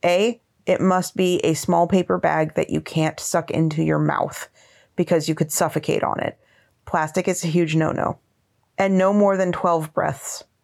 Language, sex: English, female